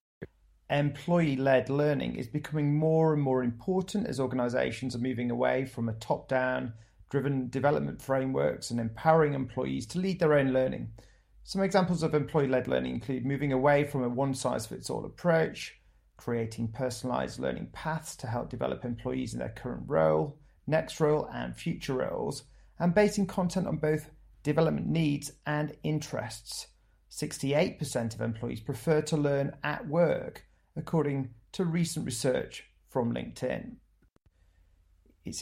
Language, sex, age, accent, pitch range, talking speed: English, male, 30-49, British, 120-150 Hz, 135 wpm